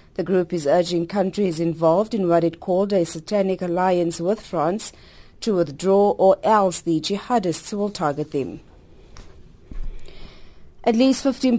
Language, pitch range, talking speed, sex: English, 165-195 Hz, 140 wpm, female